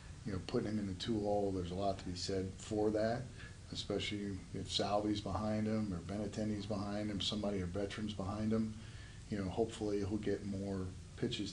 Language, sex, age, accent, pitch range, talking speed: English, male, 40-59, American, 95-110 Hz, 195 wpm